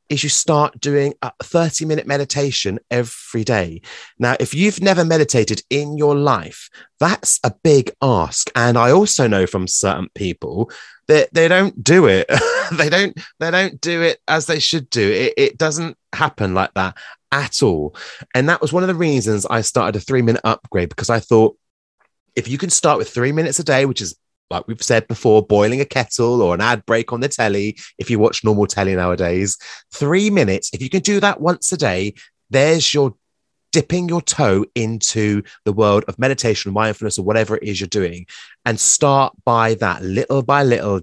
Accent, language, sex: British, English, male